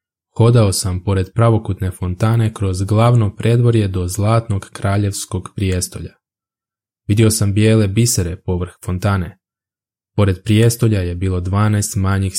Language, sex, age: Croatian, male, 20-39